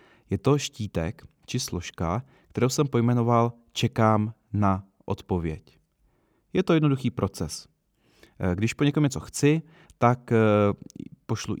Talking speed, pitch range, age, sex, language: 115 wpm, 100-125 Hz, 30-49, male, Czech